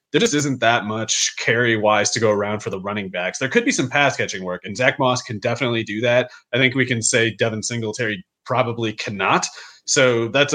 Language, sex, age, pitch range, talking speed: English, male, 30-49, 110-135 Hz, 215 wpm